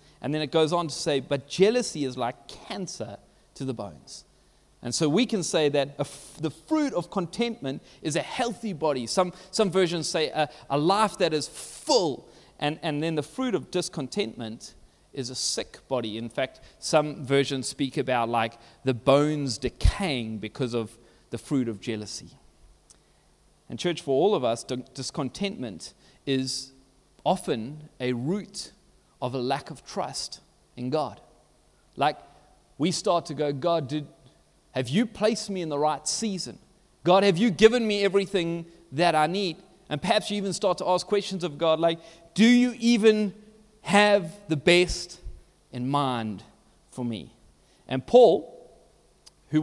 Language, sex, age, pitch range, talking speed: English, male, 30-49, 130-190 Hz, 160 wpm